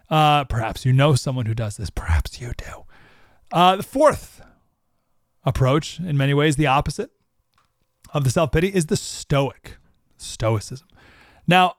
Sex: male